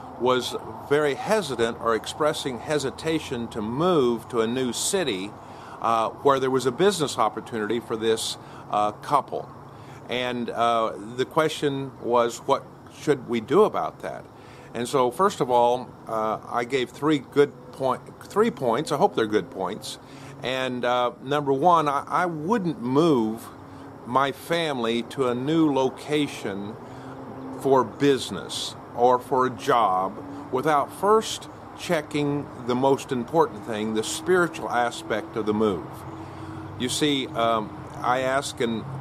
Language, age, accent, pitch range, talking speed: English, 50-69, American, 120-145 Hz, 140 wpm